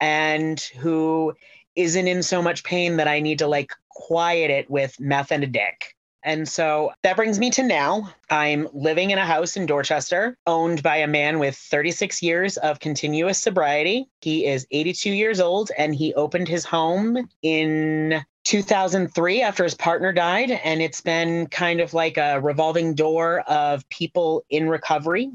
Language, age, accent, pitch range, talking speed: English, 30-49, American, 140-165 Hz, 170 wpm